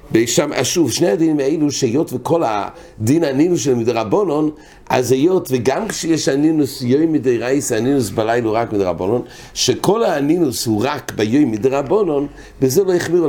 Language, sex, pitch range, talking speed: English, male, 120-170 Hz, 120 wpm